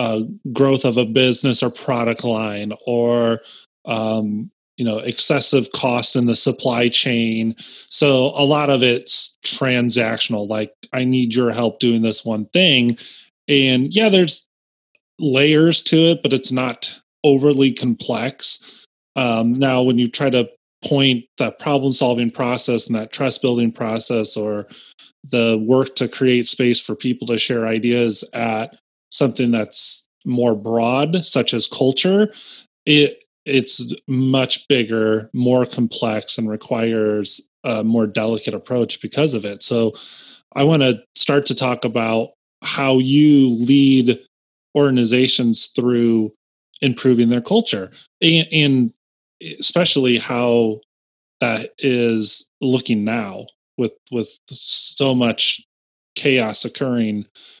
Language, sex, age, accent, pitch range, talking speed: English, male, 30-49, American, 115-135 Hz, 130 wpm